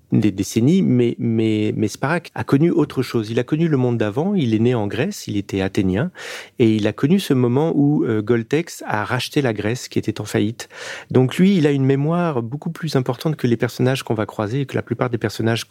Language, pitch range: French, 110-135 Hz